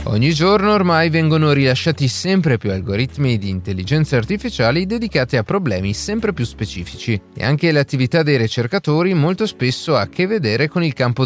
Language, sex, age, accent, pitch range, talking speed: Italian, male, 30-49, native, 110-165 Hz, 165 wpm